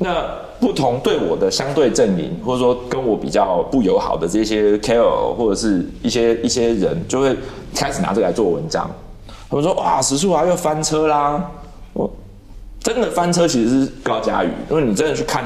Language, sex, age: Chinese, male, 30-49